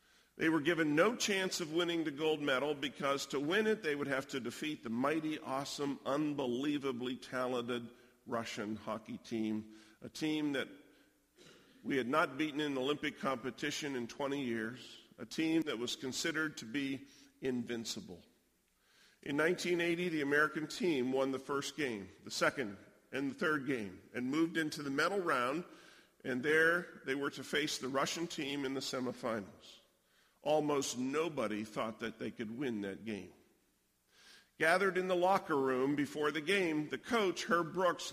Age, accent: 50-69, American